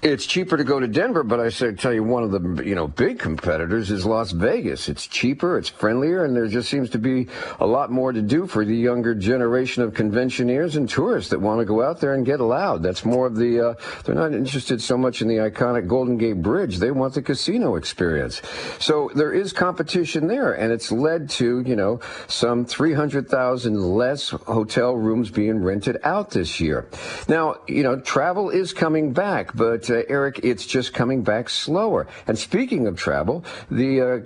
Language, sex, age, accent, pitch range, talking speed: English, male, 50-69, American, 115-150 Hz, 205 wpm